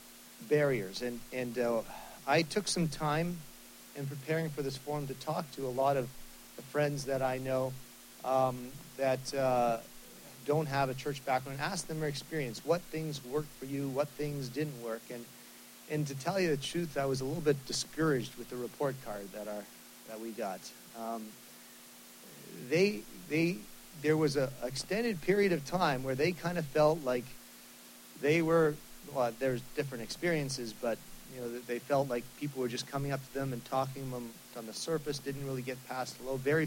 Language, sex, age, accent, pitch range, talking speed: English, male, 40-59, American, 120-150 Hz, 190 wpm